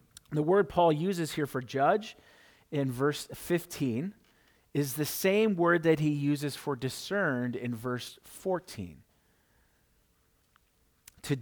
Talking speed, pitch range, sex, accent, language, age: 120 wpm, 135-185 Hz, male, American, English, 40-59